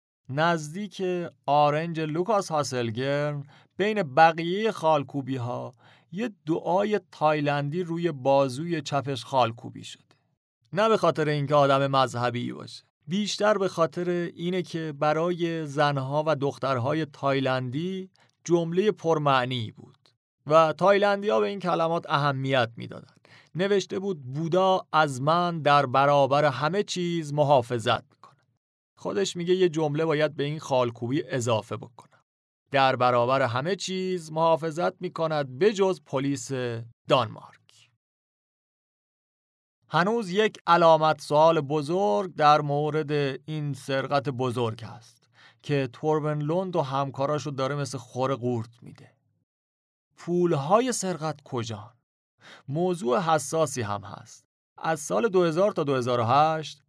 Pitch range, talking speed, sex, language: 130-170 Hz, 115 wpm, male, Persian